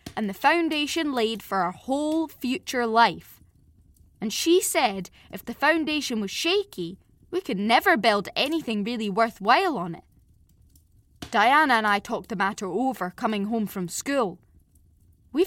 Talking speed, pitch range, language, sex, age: 145 wpm, 185-290 Hz, English, female, 10-29